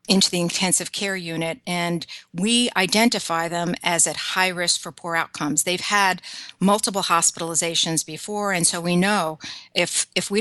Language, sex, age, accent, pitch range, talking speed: English, female, 50-69, American, 170-195 Hz, 160 wpm